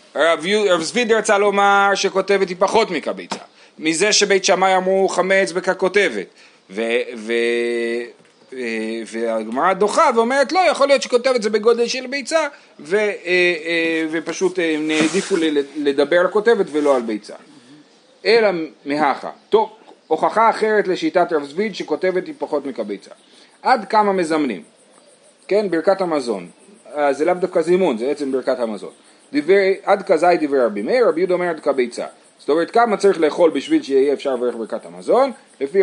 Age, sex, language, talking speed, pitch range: 40-59, male, Hebrew, 140 wpm, 155-220 Hz